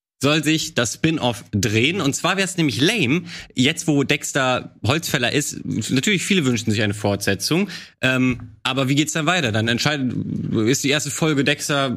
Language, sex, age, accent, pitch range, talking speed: German, male, 20-39, German, 115-150 Hz, 175 wpm